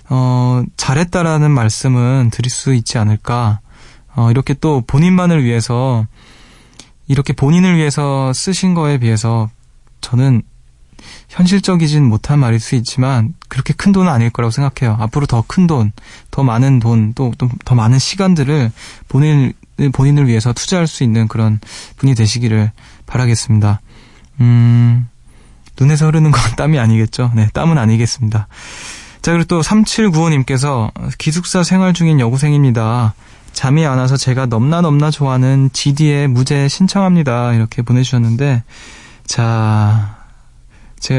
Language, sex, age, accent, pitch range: Korean, male, 20-39, native, 115-150 Hz